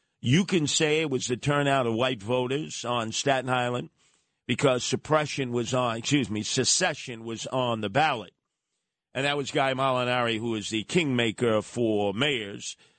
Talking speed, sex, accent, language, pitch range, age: 160 wpm, male, American, English, 115-150 Hz, 50-69